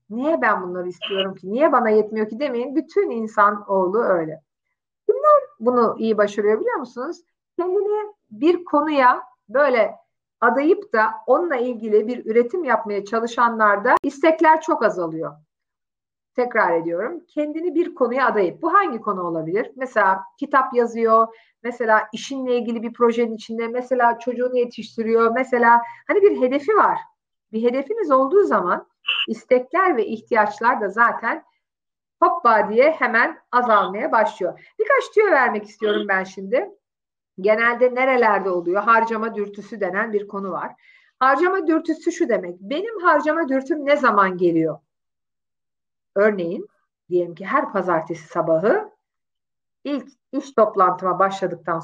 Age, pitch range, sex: 50-69, 205-290 Hz, female